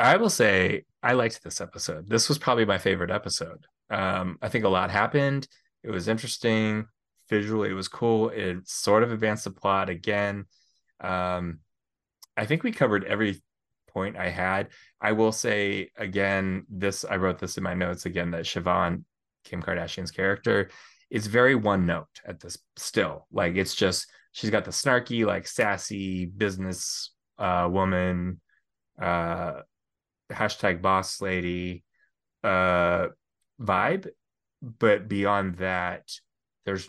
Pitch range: 90-100 Hz